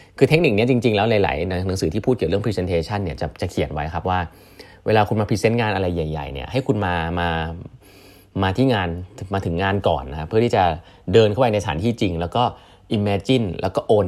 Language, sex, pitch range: Thai, male, 85-125 Hz